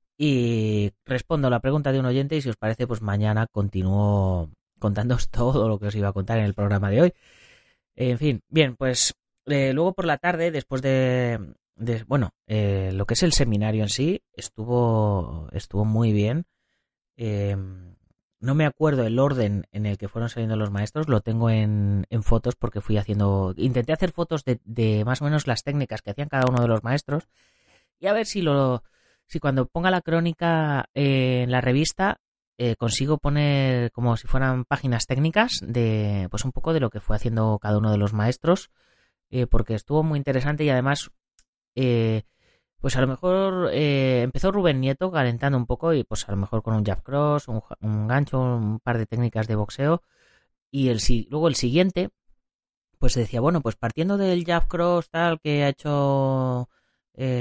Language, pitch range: Spanish, 110-145 Hz